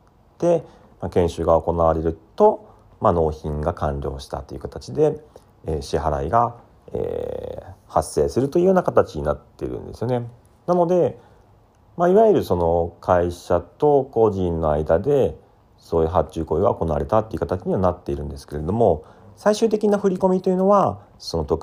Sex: male